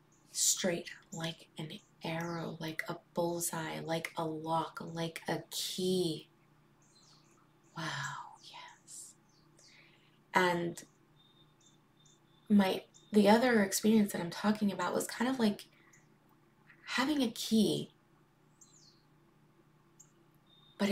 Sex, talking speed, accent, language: female, 90 wpm, American, English